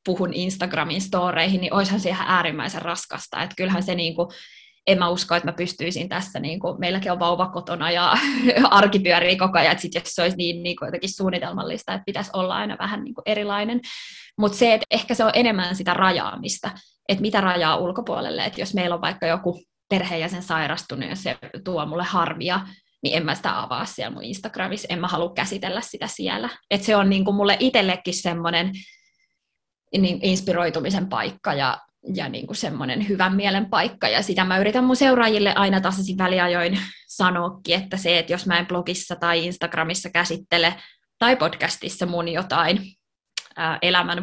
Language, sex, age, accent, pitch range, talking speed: Finnish, female, 20-39, native, 175-200 Hz, 175 wpm